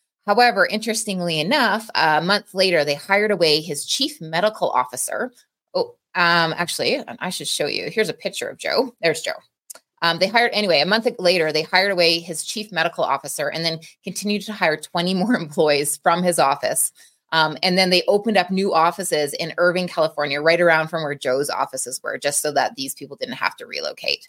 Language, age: English, 20-39